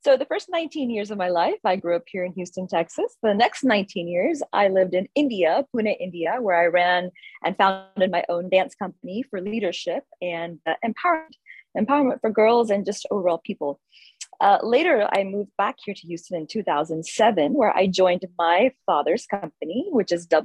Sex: female